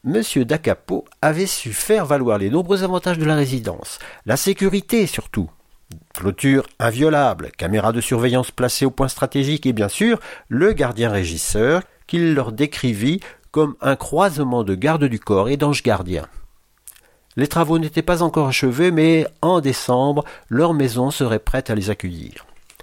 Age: 50-69